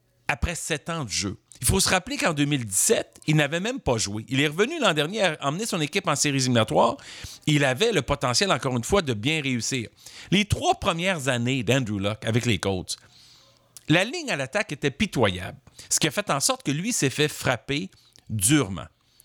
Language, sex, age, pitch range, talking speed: French, male, 50-69, 120-165 Hz, 205 wpm